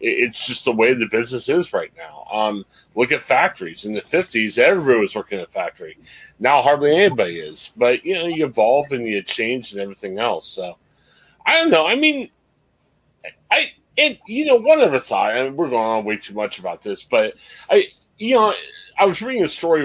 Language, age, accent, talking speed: English, 30-49, American, 210 wpm